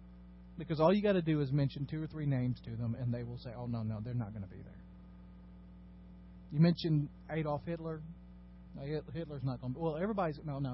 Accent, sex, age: American, male, 40-59